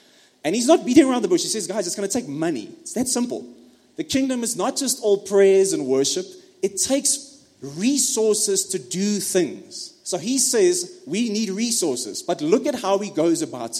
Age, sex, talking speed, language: 30-49, male, 200 wpm, English